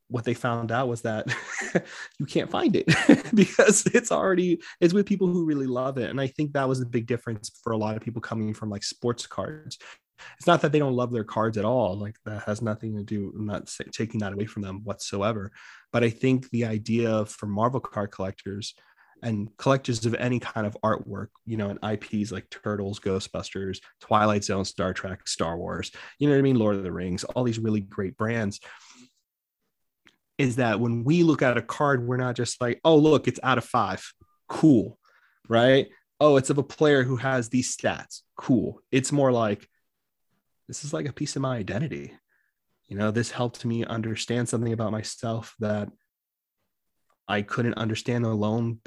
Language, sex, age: English, male, 30-49